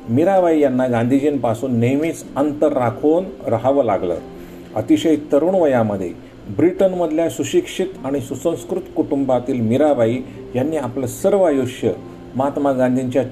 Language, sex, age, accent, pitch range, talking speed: Marathi, male, 50-69, native, 115-155 Hz, 105 wpm